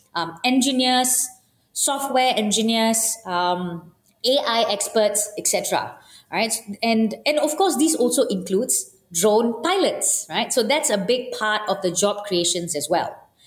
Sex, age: female, 20-39